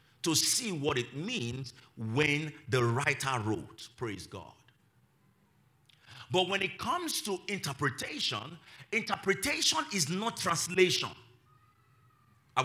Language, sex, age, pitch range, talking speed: English, male, 50-69, 120-190 Hz, 105 wpm